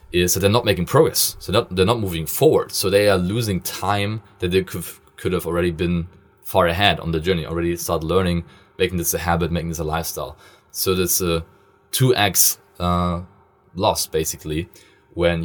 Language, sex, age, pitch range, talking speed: English, male, 20-39, 85-100 Hz, 190 wpm